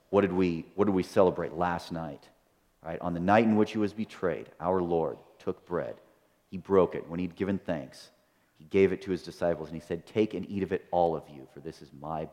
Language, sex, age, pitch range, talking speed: English, male, 40-59, 80-100 Hz, 245 wpm